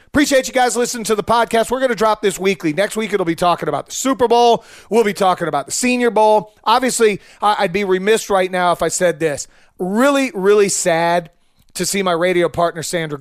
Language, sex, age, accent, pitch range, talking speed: English, male, 30-49, American, 165-215 Hz, 220 wpm